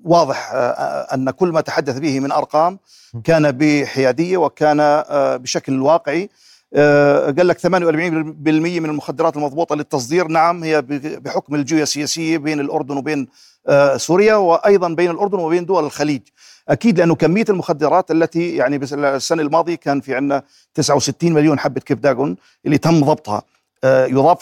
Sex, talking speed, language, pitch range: male, 130 wpm, Arabic, 145-170 Hz